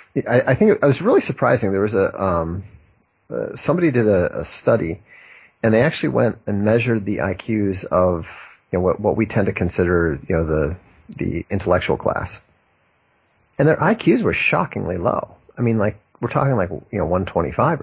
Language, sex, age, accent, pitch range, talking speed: English, male, 30-49, American, 90-110 Hz, 185 wpm